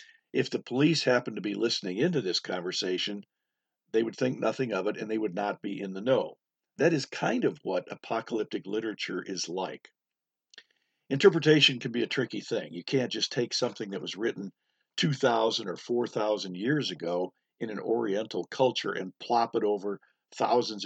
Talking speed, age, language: 175 wpm, 50-69, English